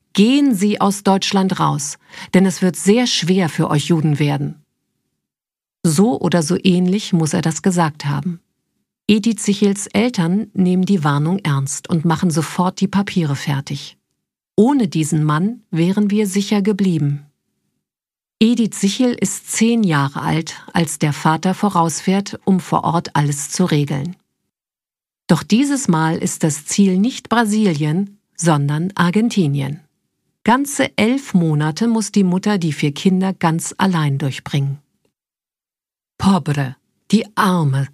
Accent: German